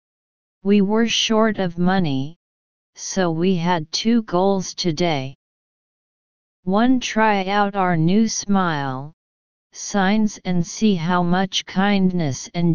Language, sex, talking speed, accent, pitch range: English, female, 115 wpm, American, 160-195 Hz